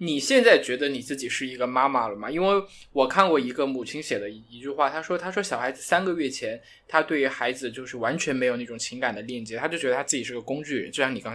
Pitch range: 125-175 Hz